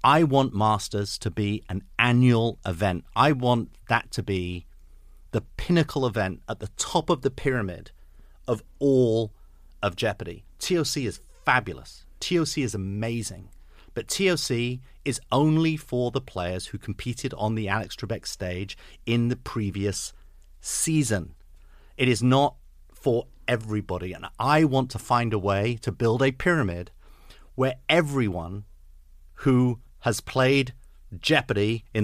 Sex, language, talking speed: male, English, 135 wpm